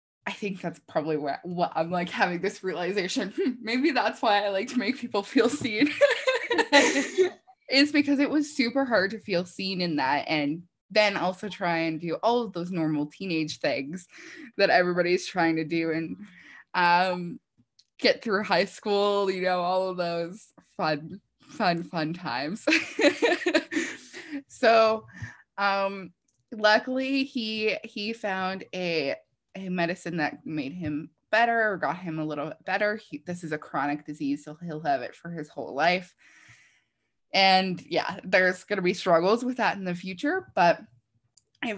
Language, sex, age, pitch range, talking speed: English, female, 20-39, 160-230 Hz, 160 wpm